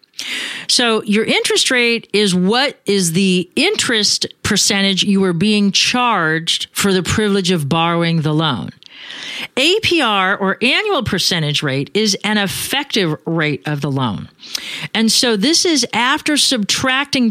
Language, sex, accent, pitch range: English, female, American, 175-230 Hz